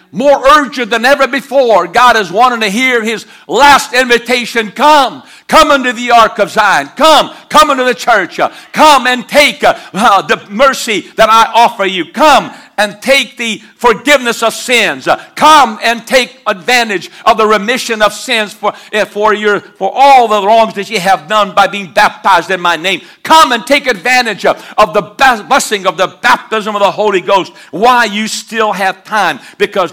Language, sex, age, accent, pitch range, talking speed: English, male, 60-79, American, 190-240 Hz, 175 wpm